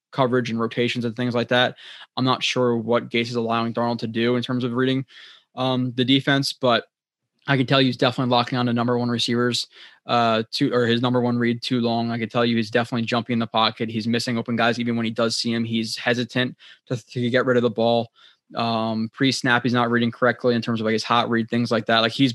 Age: 20-39